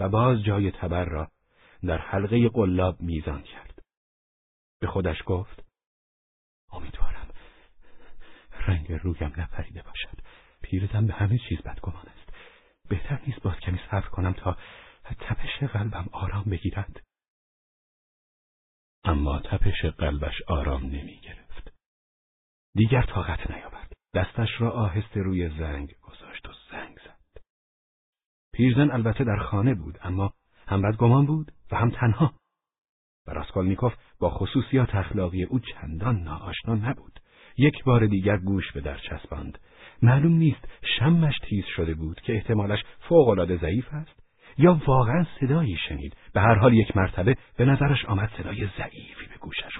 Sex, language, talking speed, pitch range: male, Persian, 130 wpm, 85-115 Hz